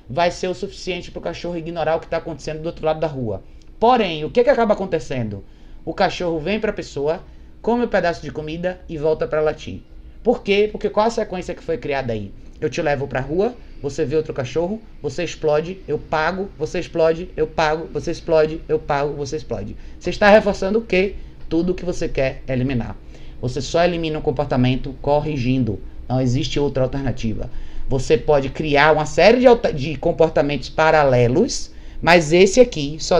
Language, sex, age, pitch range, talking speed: Portuguese, male, 20-39, 135-180 Hz, 190 wpm